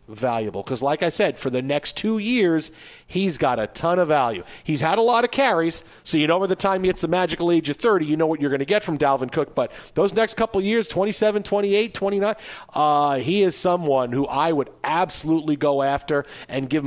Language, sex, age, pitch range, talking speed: English, male, 40-59, 140-185 Hz, 235 wpm